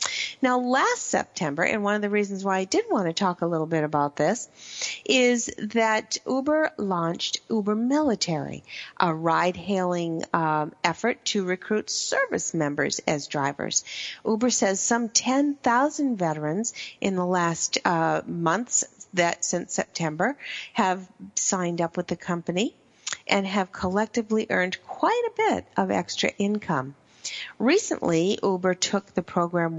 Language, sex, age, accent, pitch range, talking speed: English, female, 50-69, American, 165-220 Hz, 140 wpm